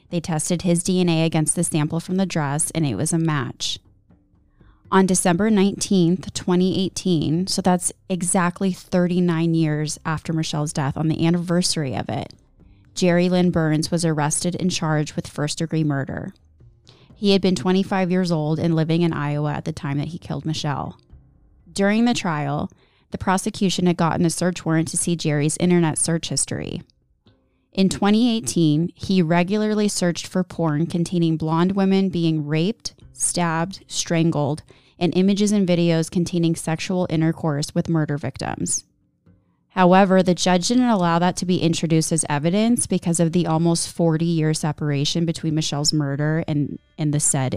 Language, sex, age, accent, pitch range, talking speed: English, female, 20-39, American, 150-180 Hz, 155 wpm